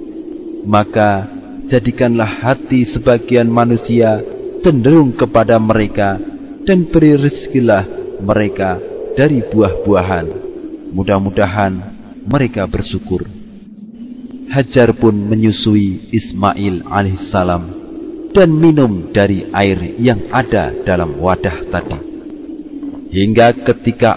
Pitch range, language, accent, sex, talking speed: 100-160 Hz, English, Indonesian, male, 80 wpm